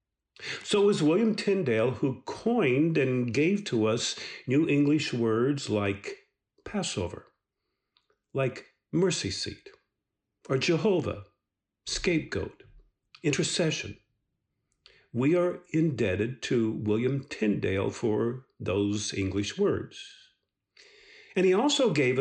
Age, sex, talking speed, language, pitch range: 50-69, male, 100 wpm, English, 105-170 Hz